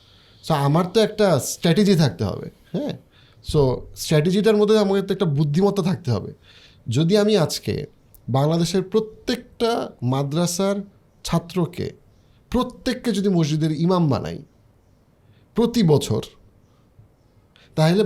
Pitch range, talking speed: 120-195 Hz, 105 wpm